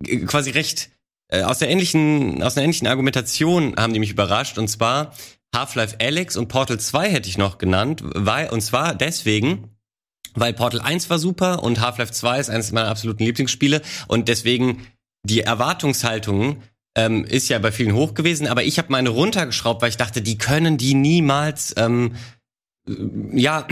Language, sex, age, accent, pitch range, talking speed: German, male, 30-49, German, 110-140 Hz, 170 wpm